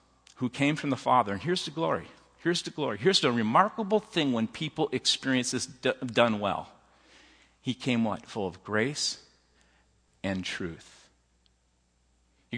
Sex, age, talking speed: male, 50-69, 155 wpm